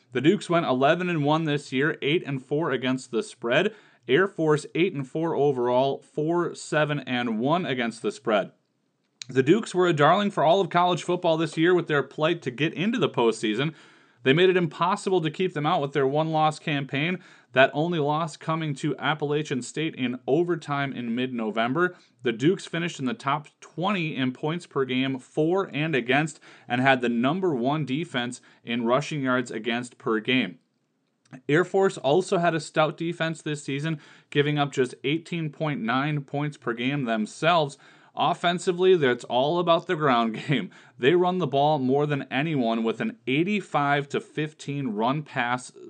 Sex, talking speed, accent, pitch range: male, 165 wpm, American, 130-165 Hz